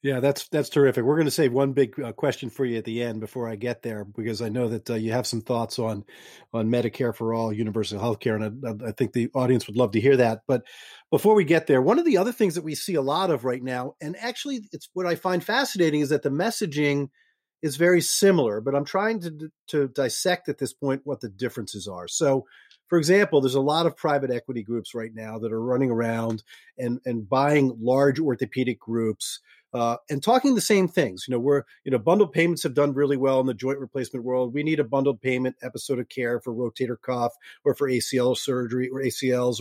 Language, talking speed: English, 235 wpm